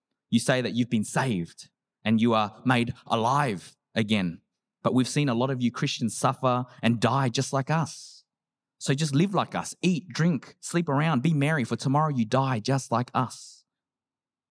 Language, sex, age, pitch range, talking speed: English, male, 20-39, 105-130 Hz, 180 wpm